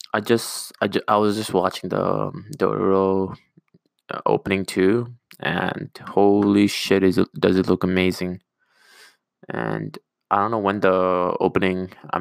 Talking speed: 155 wpm